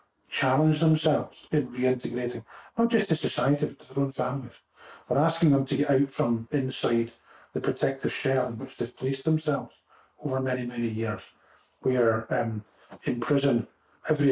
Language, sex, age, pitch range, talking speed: English, male, 50-69, 120-145 Hz, 160 wpm